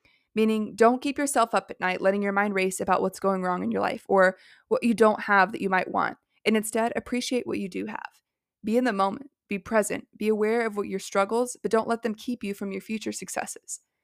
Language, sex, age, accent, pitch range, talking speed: English, female, 20-39, American, 200-235 Hz, 240 wpm